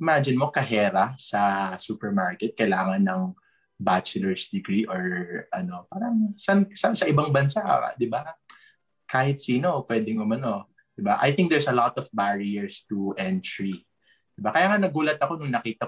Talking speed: 155 wpm